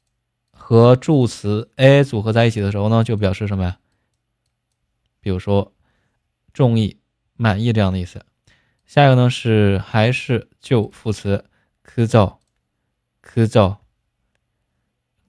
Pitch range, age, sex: 100-125 Hz, 20-39, male